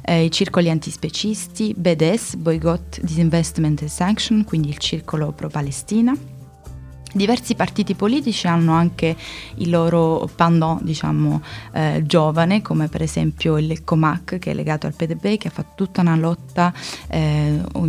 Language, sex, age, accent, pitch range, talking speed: Italian, female, 20-39, native, 150-180 Hz, 135 wpm